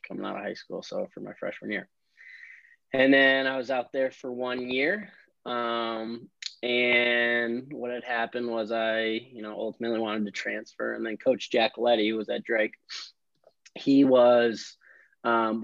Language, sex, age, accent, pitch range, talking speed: English, male, 20-39, American, 105-120 Hz, 165 wpm